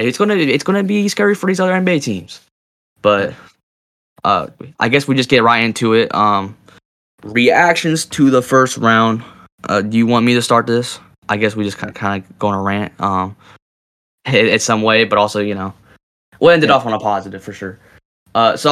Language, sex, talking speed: English, male, 215 wpm